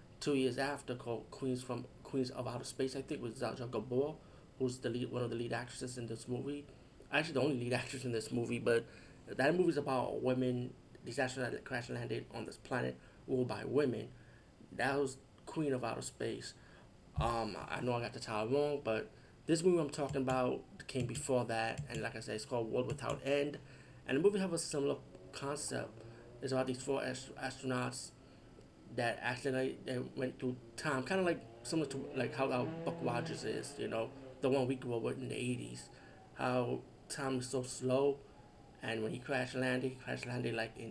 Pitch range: 120-135 Hz